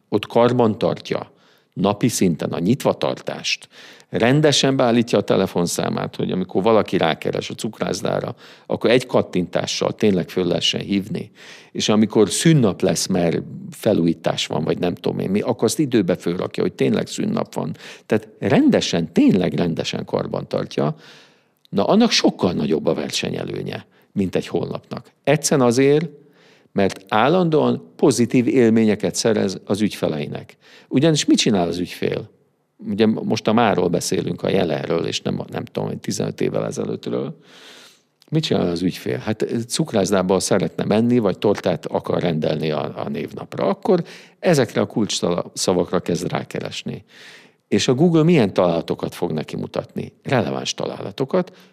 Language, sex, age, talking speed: Hungarian, male, 50-69, 140 wpm